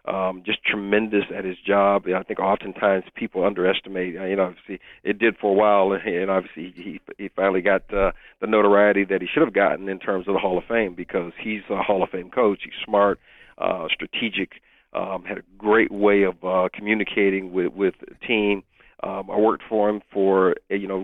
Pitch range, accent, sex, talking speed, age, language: 95-105 Hz, American, male, 195 wpm, 50-69, English